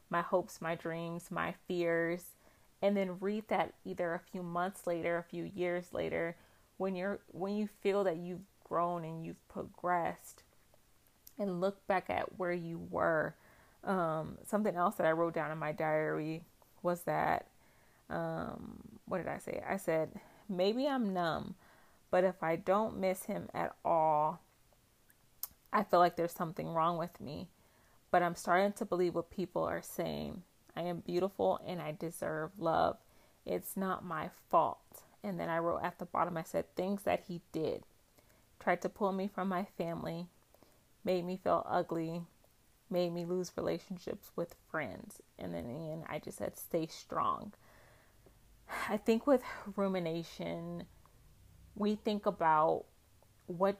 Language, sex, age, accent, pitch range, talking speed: English, female, 30-49, American, 160-190 Hz, 155 wpm